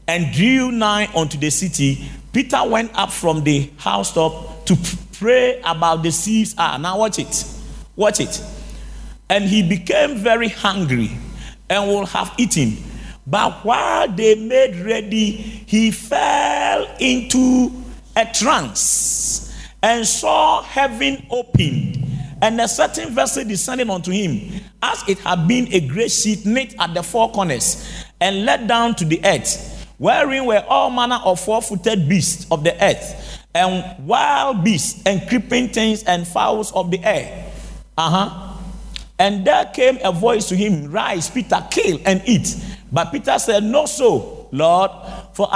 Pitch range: 170-220 Hz